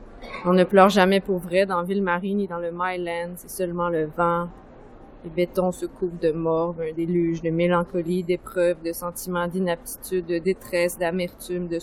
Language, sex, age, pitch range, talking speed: French, female, 20-39, 170-190 Hz, 180 wpm